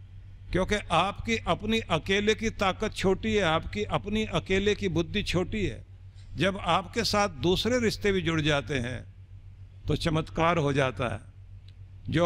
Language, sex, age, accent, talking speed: Hindi, male, 50-69, native, 145 wpm